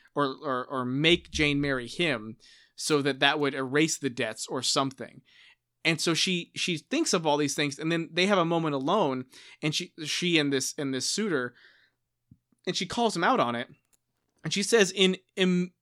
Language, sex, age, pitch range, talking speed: English, male, 30-49, 135-175 Hz, 195 wpm